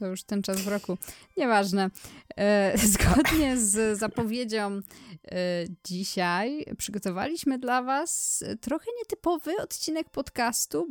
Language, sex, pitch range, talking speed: Polish, female, 185-240 Hz, 100 wpm